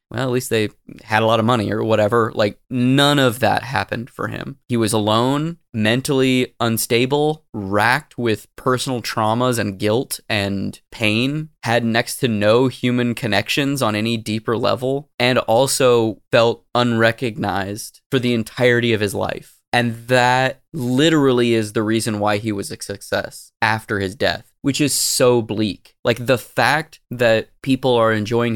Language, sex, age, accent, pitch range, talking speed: English, male, 20-39, American, 110-130 Hz, 160 wpm